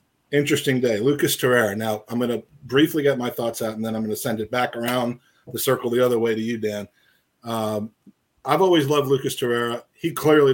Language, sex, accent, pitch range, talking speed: English, male, American, 115-135 Hz, 215 wpm